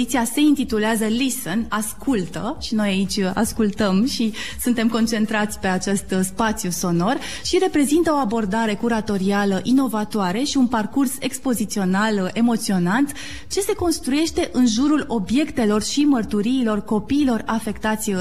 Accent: native